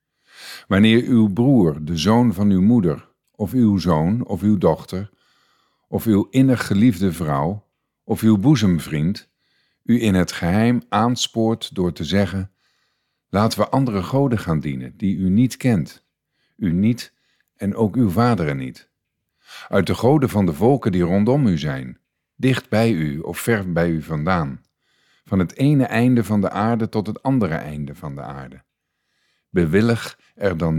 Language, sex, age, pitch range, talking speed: Dutch, male, 50-69, 85-115 Hz, 160 wpm